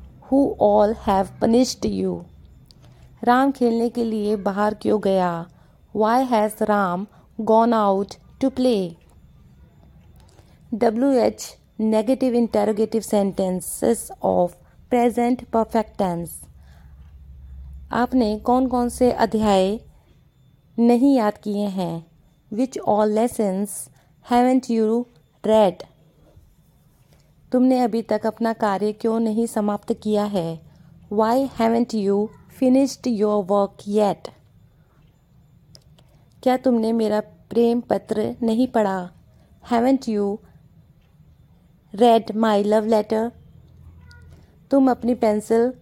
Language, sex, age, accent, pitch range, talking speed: Hindi, female, 30-49, native, 185-235 Hz, 100 wpm